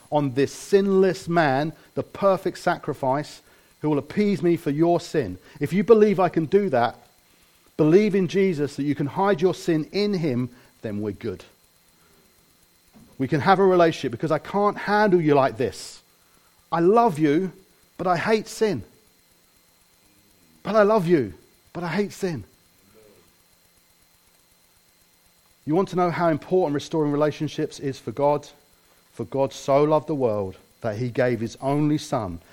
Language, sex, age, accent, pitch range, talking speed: English, male, 40-59, British, 130-175 Hz, 155 wpm